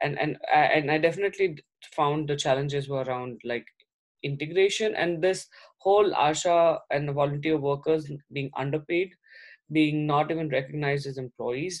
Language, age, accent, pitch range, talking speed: English, 20-39, Indian, 145-180 Hz, 140 wpm